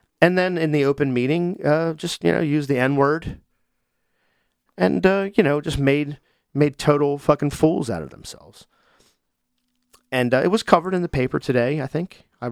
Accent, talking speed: American, 185 wpm